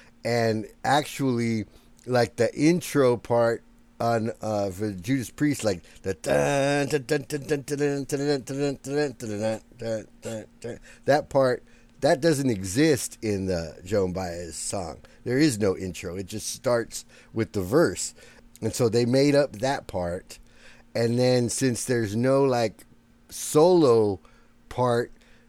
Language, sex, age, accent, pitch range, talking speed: English, male, 50-69, American, 105-130 Hz, 110 wpm